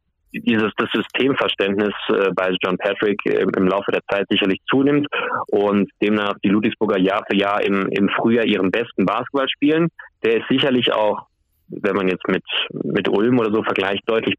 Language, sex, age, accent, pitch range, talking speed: German, male, 20-39, German, 95-115 Hz, 175 wpm